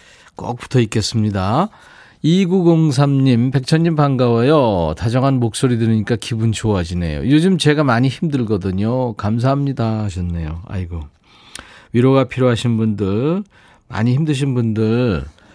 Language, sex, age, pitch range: Korean, male, 40-59, 100-150 Hz